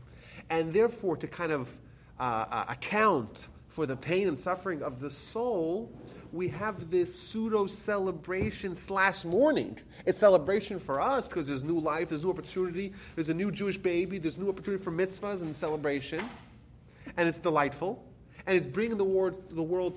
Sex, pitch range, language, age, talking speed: male, 125-180 Hz, English, 30-49, 160 wpm